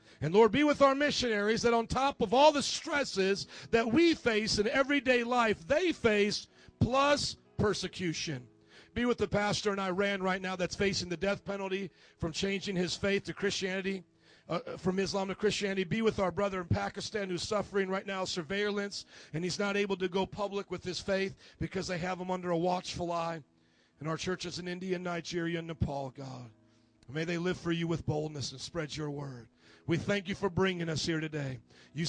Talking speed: 195 wpm